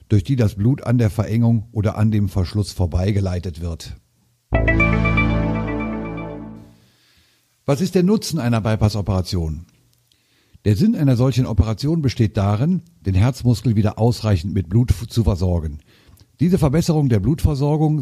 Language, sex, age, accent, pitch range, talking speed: German, male, 50-69, German, 100-125 Hz, 125 wpm